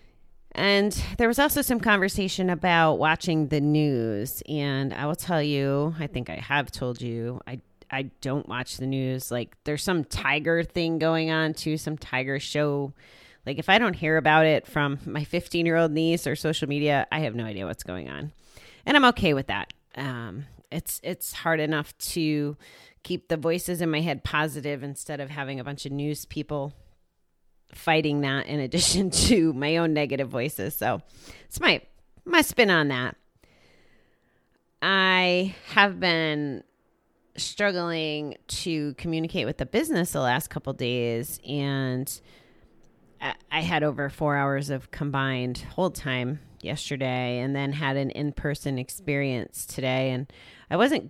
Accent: American